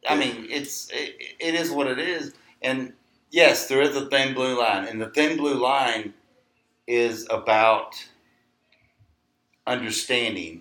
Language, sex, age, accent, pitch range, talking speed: English, male, 40-59, American, 95-125 Hz, 140 wpm